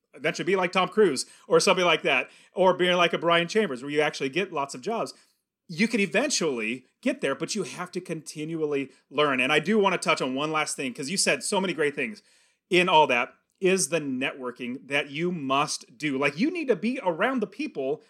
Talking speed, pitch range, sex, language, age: 225 wpm, 170-240 Hz, male, English, 30-49